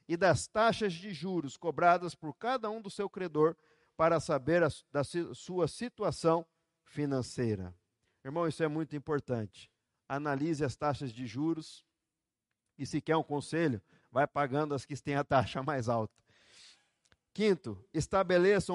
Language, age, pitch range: Portuguese, 50-69, 130-165 Hz